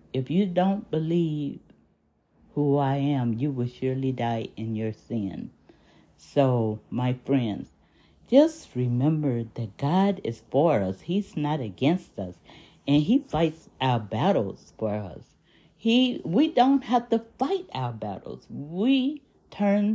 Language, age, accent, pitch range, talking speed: English, 50-69, American, 140-230 Hz, 130 wpm